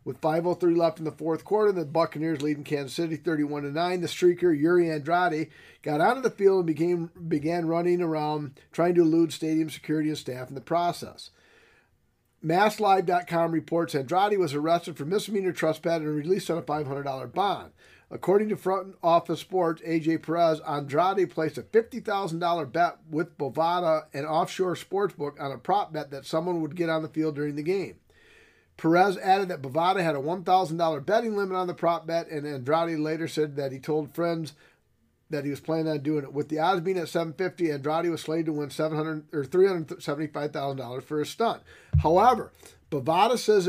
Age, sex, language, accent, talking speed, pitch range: 50-69, male, English, American, 180 wpm, 155-180 Hz